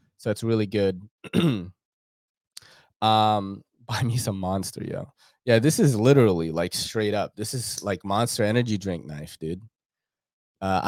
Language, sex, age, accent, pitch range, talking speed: English, male, 20-39, American, 105-135 Hz, 145 wpm